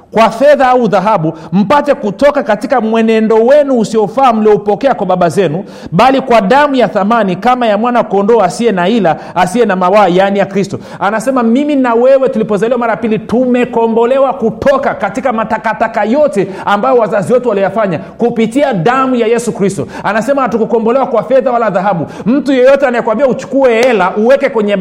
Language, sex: Swahili, male